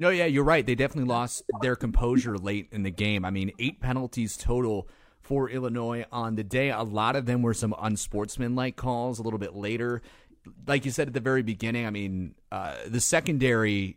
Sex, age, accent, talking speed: male, 30-49, American, 200 wpm